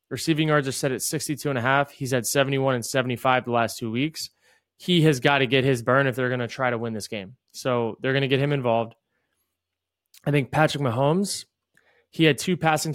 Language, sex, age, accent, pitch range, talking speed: English, male, 20-39, American, 125-150 Hz, 225 wpm